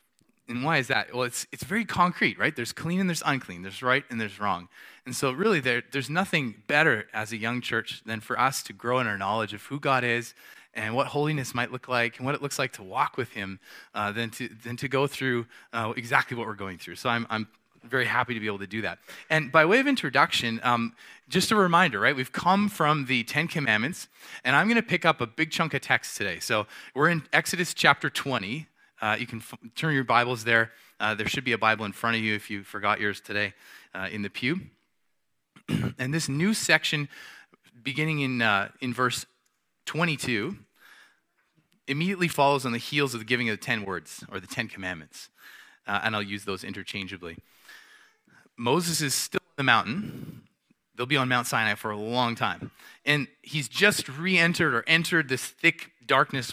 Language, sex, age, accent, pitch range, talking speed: English, male, 20-39, American, 110-150 Hz, 210 wpm